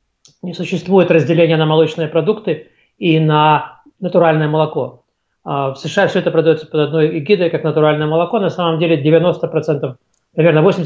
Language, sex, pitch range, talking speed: Russian, male, 155-180 Hz, 145 wpm